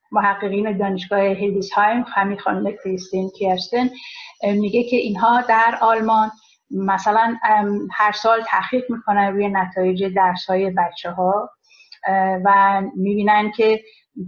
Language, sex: Persian, female